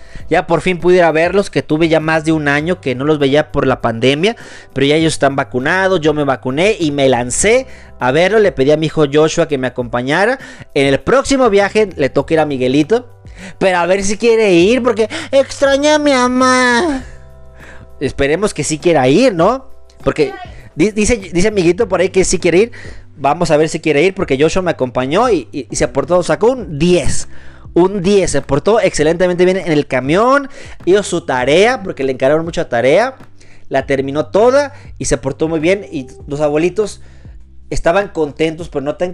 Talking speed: 200 wpm